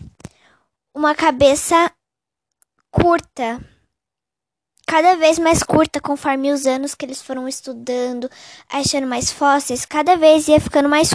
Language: Portuguese